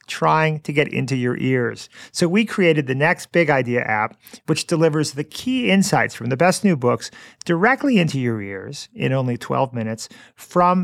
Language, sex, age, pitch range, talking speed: English, male, 40-59, 120-165 Hz, 185 wpm